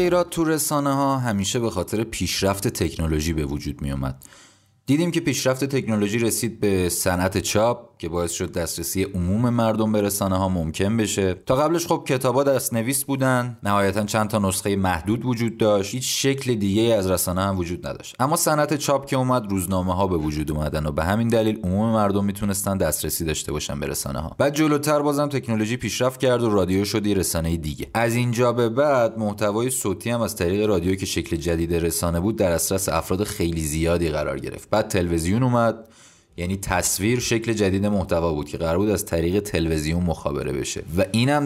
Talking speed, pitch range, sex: 180 wpm, 90-120 Hz, male